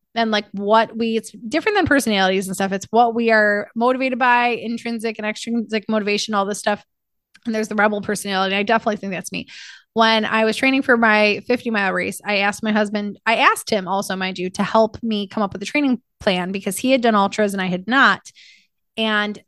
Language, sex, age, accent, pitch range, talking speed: English, female, 20-39, American, 205-235 Hz, 220 wpm